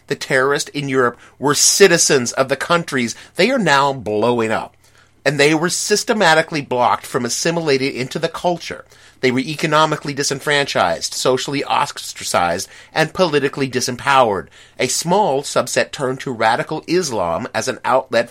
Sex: male